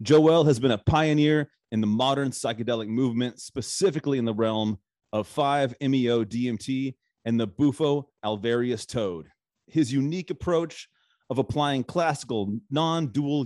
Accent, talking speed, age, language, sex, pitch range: American, 120 wpm, 30-49, English, male, 115-150 Hz